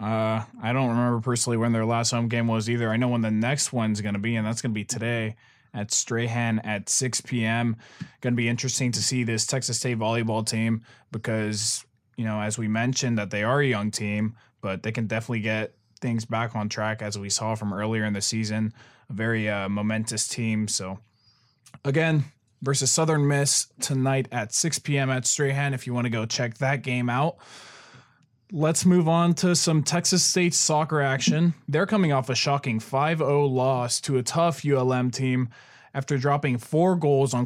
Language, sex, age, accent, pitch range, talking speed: English, male, 20-39, American, 115-140 Hz, 195 wpm